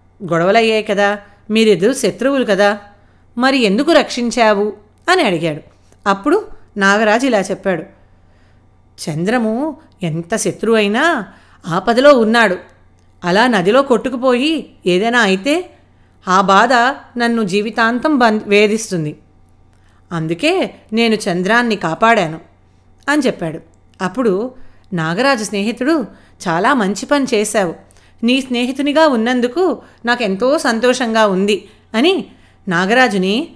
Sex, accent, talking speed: female, native, 90 wpm